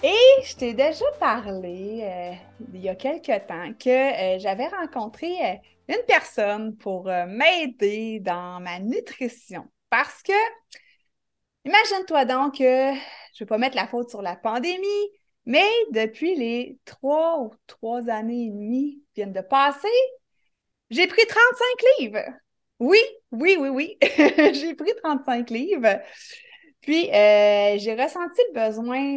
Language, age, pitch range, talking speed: French, 30-49, 210-325 Hz, 140 wpm